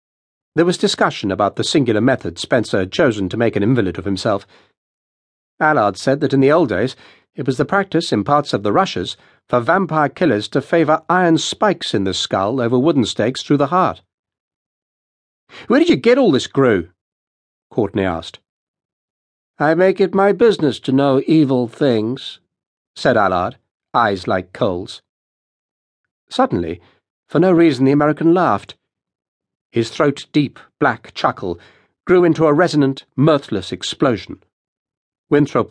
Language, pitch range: English, 105-170 Hz